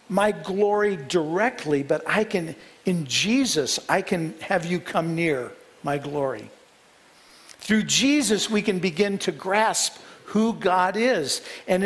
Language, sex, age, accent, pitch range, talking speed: English, male, 50-69, American, 170-215 Hz, 135 wpm